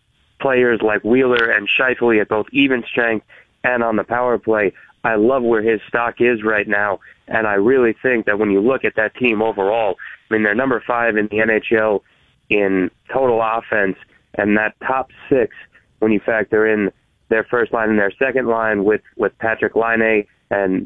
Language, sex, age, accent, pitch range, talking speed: English, male, 30-49, American, 105-120 Hz, 185 wpm